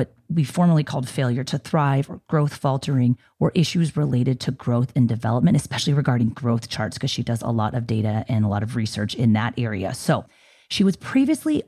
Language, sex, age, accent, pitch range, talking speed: English, female, 30-49, American, 120-150 Hz, 200 wpm